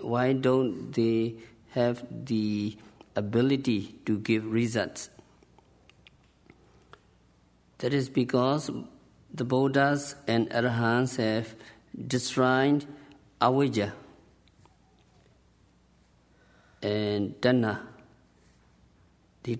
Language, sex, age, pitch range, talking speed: English, male, 50-69, 110-130 Hz, 65 wpm